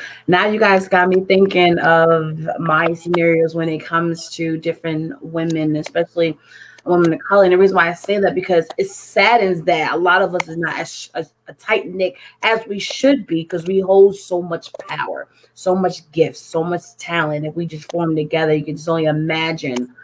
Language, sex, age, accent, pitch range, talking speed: English, female, 30-49, American, 160-190 Hz, 200 wpm